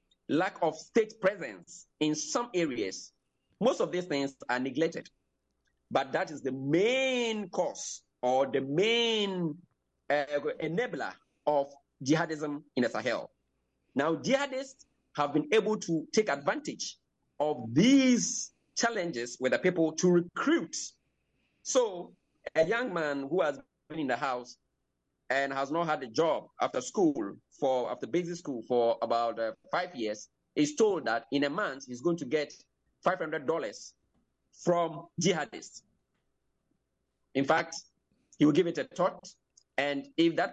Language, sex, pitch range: English, male, 140-195 Hz